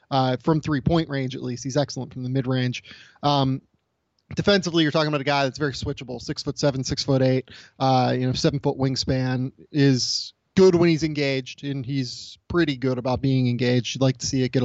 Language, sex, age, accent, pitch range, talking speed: English, male, 20-39, American, 130-160 Hz, 215 wpm